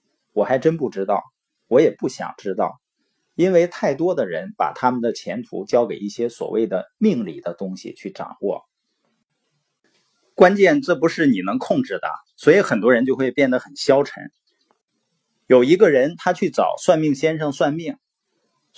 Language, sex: Chinese, male